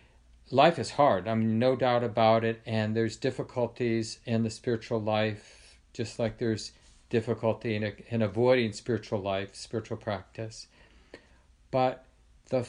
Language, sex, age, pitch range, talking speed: English, male, 50-69, 105-125 Hz, 130 wpm